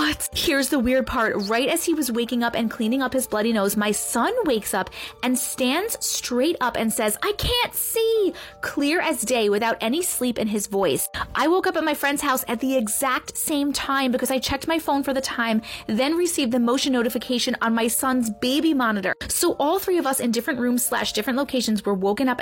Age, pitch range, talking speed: 20-39, 215-300 Hz, 220 wpm